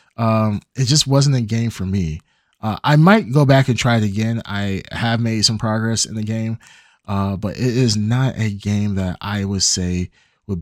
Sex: male